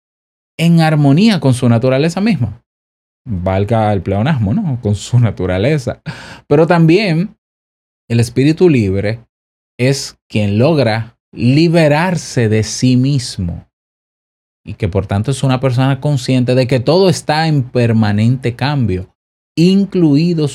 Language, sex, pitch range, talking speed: Spanish, male, 105-135 Hz, 120 wpm